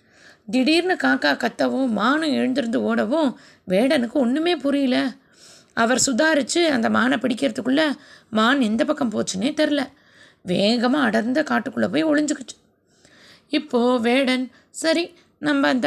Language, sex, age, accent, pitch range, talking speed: Tamil, female, 20-39, native, 230-295 Hz, 110 wpm